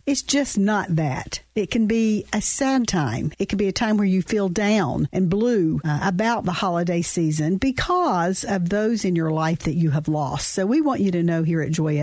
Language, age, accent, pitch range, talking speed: English, 50-69, American, 170-225 Hz, 225 wpm